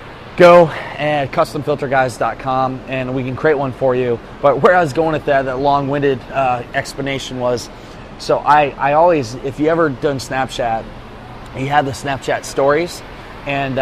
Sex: male